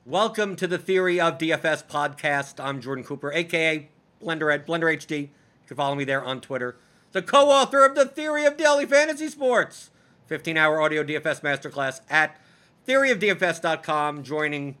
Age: 50-69